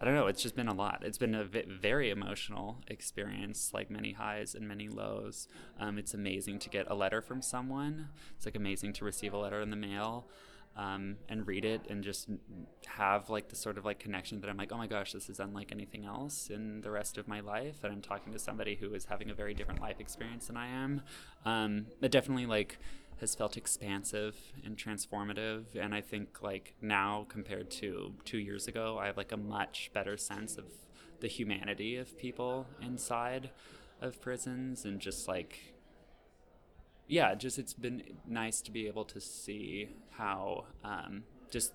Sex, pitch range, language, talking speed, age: male, 100-115 Hz, English, 195 wpm, 20-39